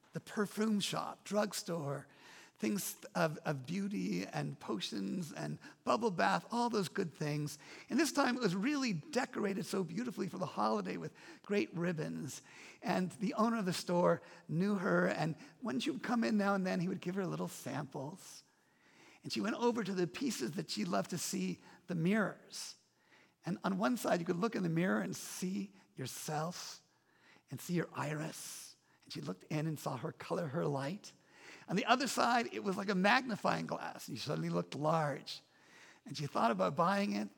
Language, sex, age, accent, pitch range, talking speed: English, male, 50-69, American, 155-205 Hz, 190 wpm